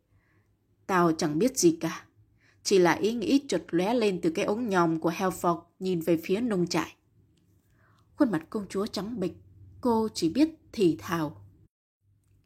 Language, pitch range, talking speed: Vietnamese, 160-215 Hz, 165 wpm